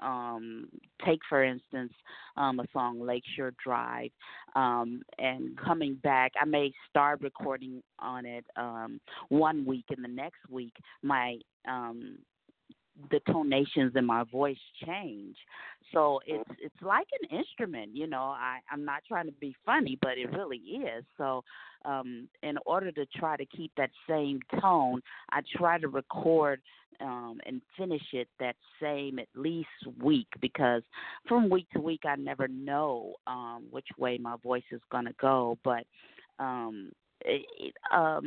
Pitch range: 120-155 Hz